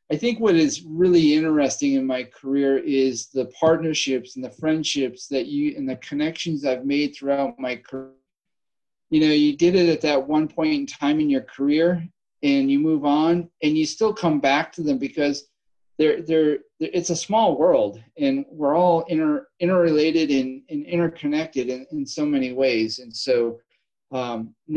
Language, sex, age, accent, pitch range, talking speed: English, male, 40-59, American, 130-170 Hz, 180 wpm